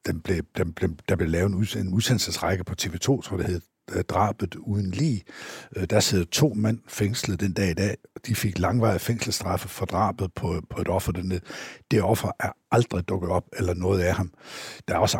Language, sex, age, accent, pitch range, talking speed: Danish, male, 60-79, native, 95-120 Hz, 200 wpm